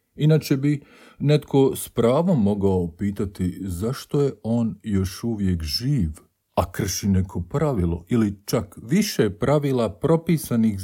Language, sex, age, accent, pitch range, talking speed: Croatian, male, 50-69, Bosnian, 90-140 Hz, 120 wpm